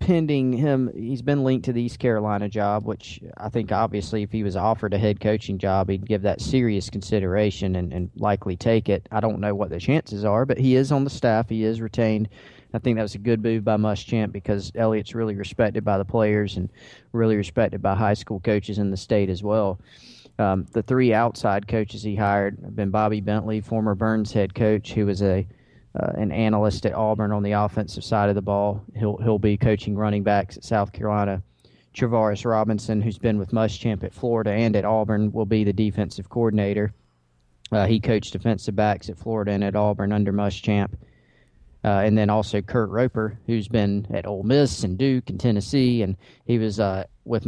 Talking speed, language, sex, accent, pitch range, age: 205 wpm, English, male, American, 100-110 Hz, 30-49